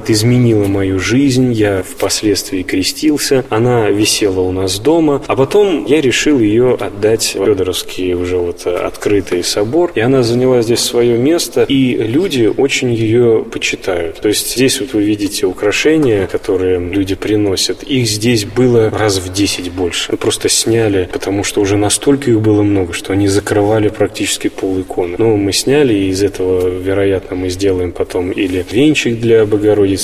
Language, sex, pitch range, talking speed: Russian, male, 95-125 Hz, 160 wpm